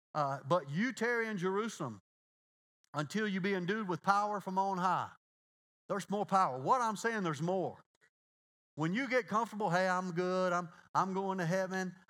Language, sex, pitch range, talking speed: English, male, 160-215 Hz, 170 wpm